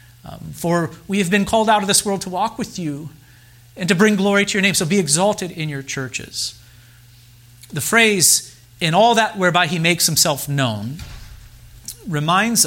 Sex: male